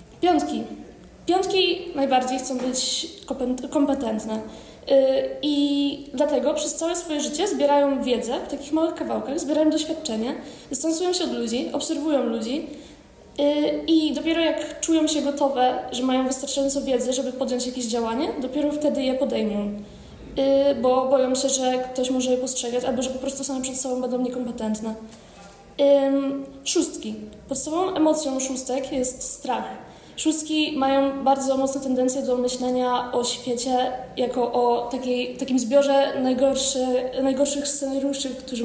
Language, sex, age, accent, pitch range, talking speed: Polish, female, 20-39, native, 255-290 Hz, 125 wpm